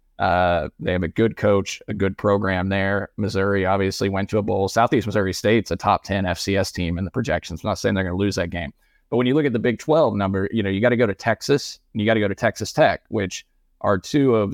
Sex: male